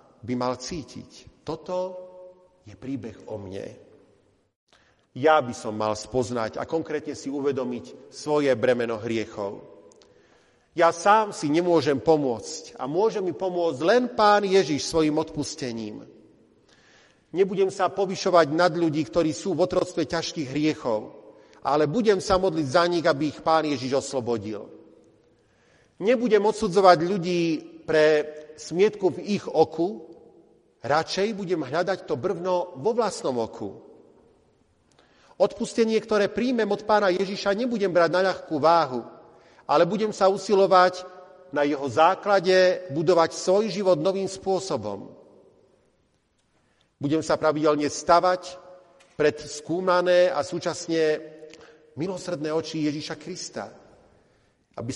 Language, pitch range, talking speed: Slovak, 150-185 Hz, 120 wpm